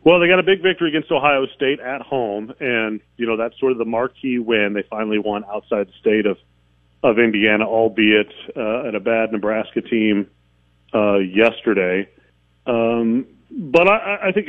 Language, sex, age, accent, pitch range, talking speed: English, male, 40-59, American, 100-120 Hz, 180 wpm